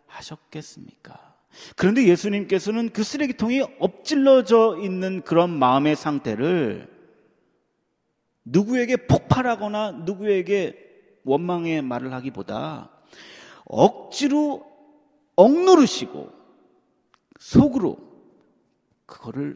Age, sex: 40-59, male